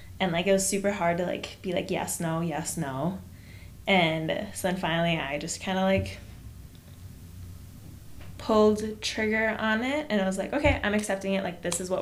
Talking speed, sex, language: 195 wpm, female, English